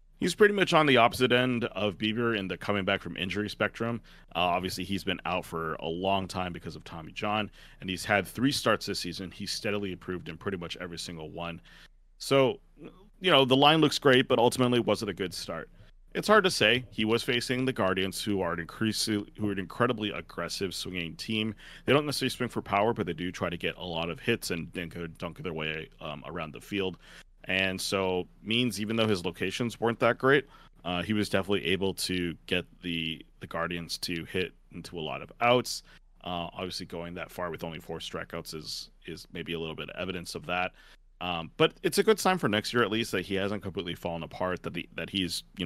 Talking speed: 225 wpm